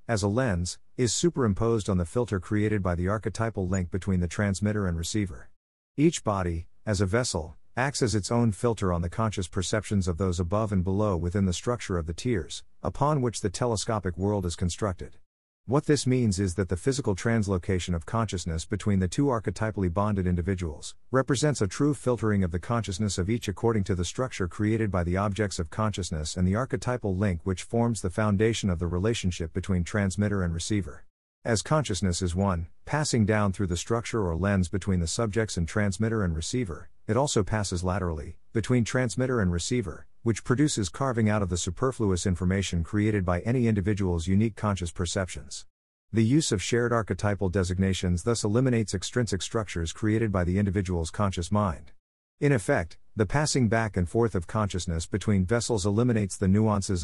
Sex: male